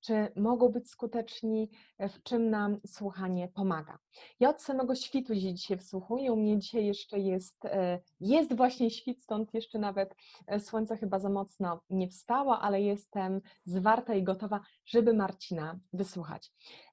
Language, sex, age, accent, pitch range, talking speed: Polish, female, 30-49, native, 195-235 Hz, 140 wpm